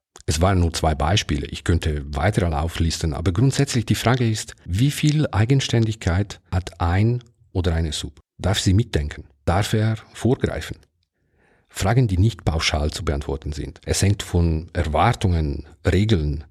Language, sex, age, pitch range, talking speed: German, male, 50-69, 80-100 Hz, 145 wpm